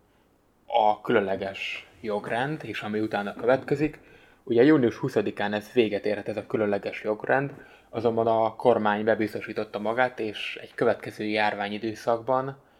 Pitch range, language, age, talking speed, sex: 105-115 Hz, Hungarian, 20-39, 120 wpm, male